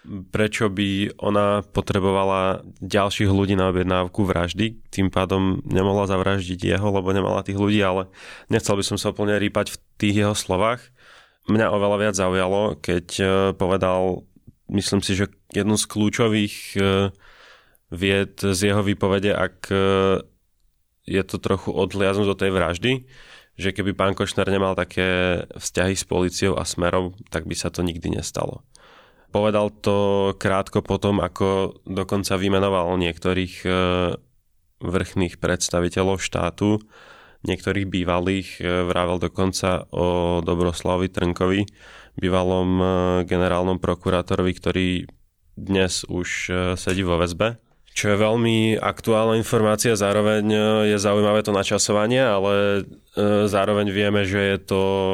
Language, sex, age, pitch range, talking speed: Slovak, male, 20-39, 90-105 Hz, 125 wpm